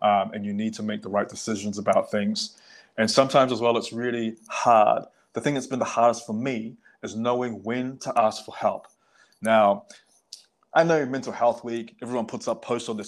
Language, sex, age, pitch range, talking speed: English, male, 20-39, 115-135 Hz, 205 wpm